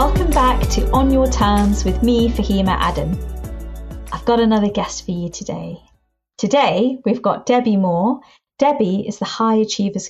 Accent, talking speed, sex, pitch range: British, 160 wpm, female, 200-235 Hz